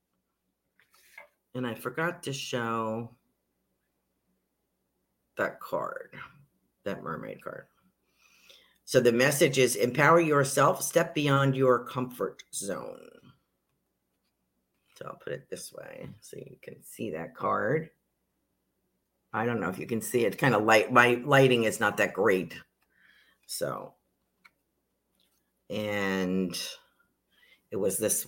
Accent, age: American, 50-69